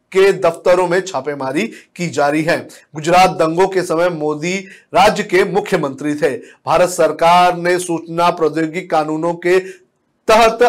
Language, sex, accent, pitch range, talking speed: Hindi, male, native, 160-200 Hz, 140 wpm